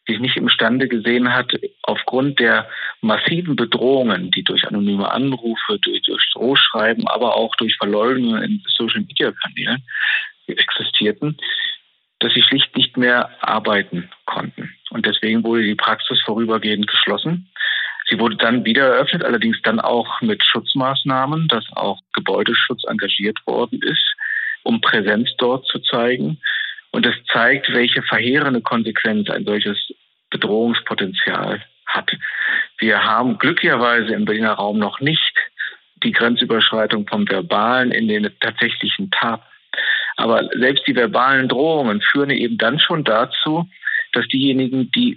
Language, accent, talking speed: German, German, 130 wpm